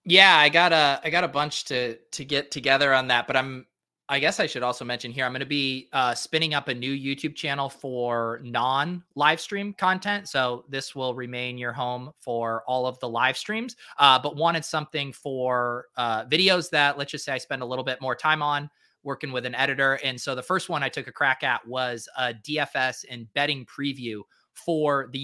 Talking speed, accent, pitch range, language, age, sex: 210 wpm, American, 125-155 Hz, English, 30-49, male